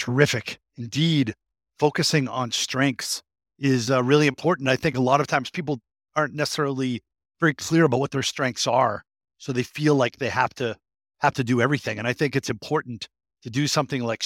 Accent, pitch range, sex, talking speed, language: American, 115-150 Hz, male, 190 wpm, English